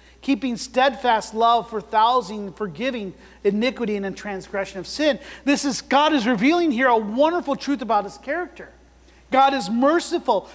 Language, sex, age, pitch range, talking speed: English, male, 40-59, 185-265 Hz, 155 wpm